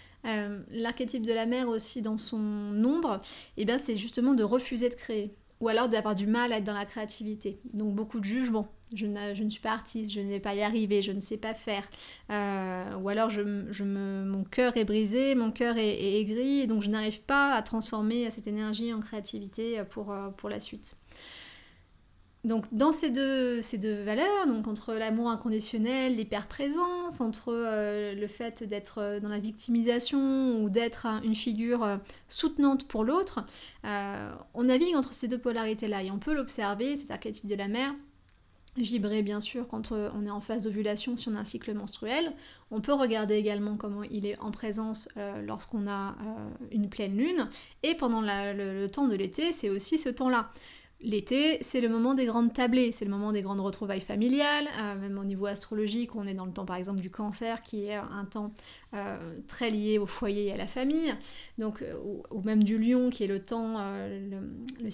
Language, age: French, 30-49